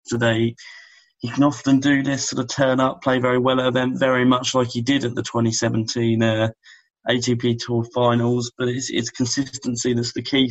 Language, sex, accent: English, male, British